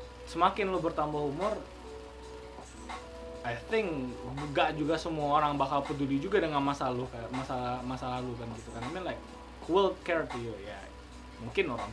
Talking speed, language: 155 wpm, Indonesian